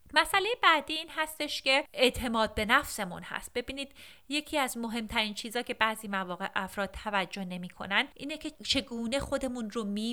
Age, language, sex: 30-49, Persian, female